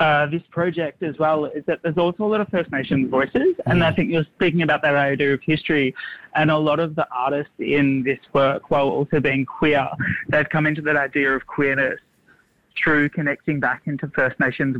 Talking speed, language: 205 wpm, English